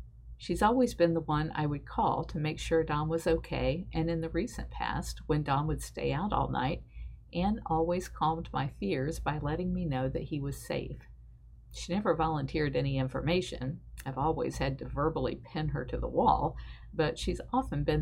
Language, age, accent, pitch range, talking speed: English, 50-69, American, 115-165 Hz, 195 wpm